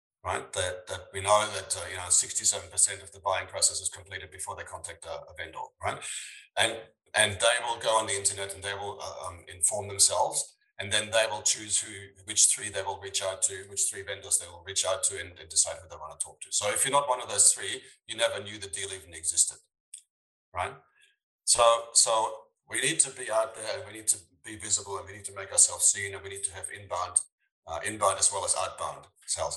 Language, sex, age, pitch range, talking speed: English, male, 30-49, 95-120 Hz, 240 wpm